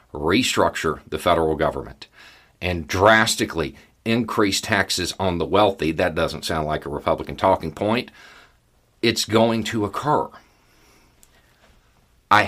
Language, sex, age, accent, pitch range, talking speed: English, male, 40-59, American, 85-110 Hz, 115 wpm